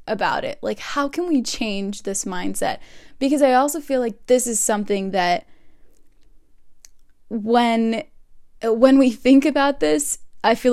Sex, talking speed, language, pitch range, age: female, 145 wpm, English, 210-255 Hz, 10-29